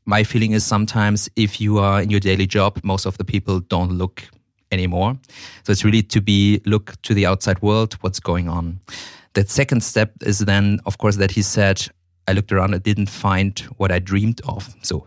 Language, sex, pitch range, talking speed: English, male, 100-115 Hz, 205 wpm